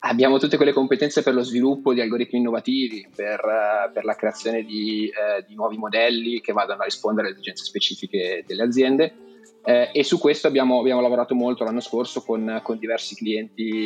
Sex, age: male, 20-39